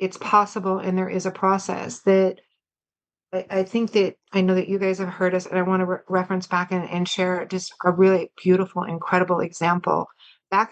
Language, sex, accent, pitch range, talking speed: English, female, American, 180-205 Hz, 200 wpm